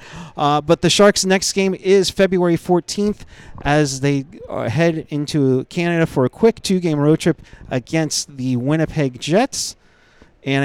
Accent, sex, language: American, male, English